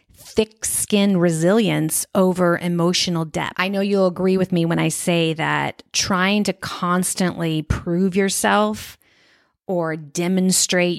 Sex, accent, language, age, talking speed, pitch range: female, American, English, 30-49, 125 wpm, 165-185 Hz